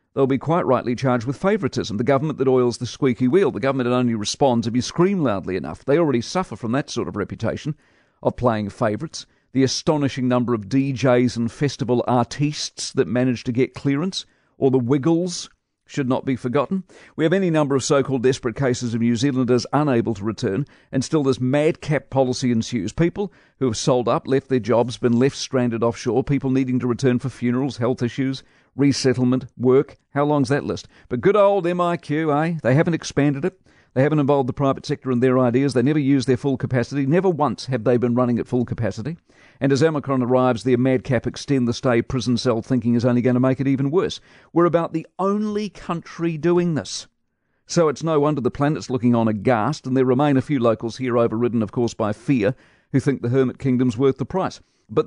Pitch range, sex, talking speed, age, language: 125-145 Hz, male, 205 wpm, 50-69, English